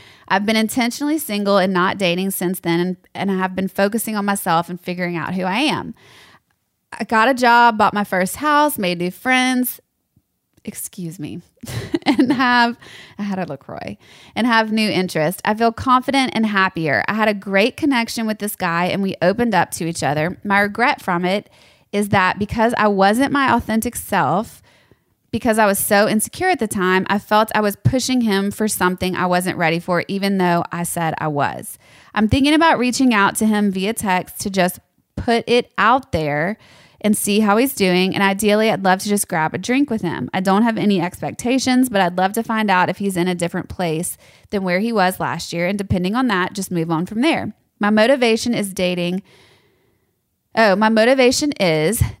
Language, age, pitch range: English, 20-39, 180-225 Hz